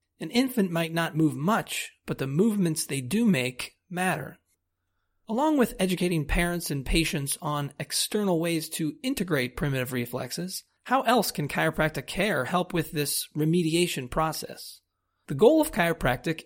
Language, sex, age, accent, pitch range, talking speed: English, male, 30-49, American, 150-195 Hz, 145 wpm